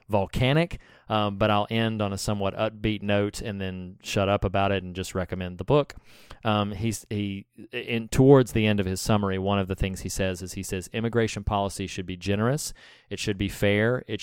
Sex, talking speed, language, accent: male, 210 wpm, English, American